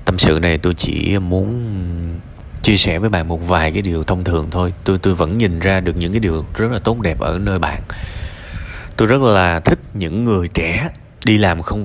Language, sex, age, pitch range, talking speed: Vietnamese, male, 20-39, 90-115 Hz, 220 wpm